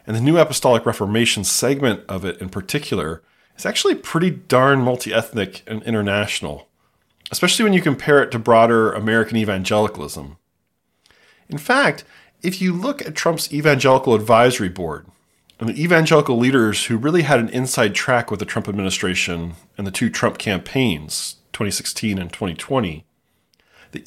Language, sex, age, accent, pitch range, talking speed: English, male, 30-49, American, 100-135 Hz, 145 wpm